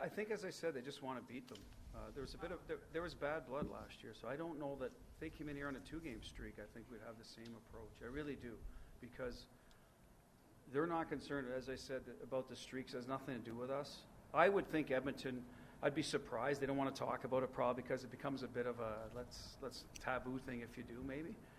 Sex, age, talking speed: male, 40-59, 260 wpm